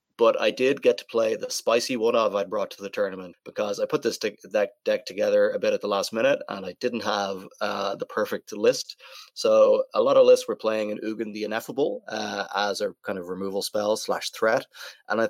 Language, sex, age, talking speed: English, male, 30-49, 220 wpm